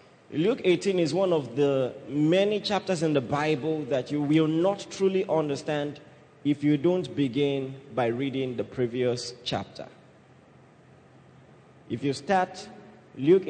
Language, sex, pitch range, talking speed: English, male, 150-210 Hz, 135 wpm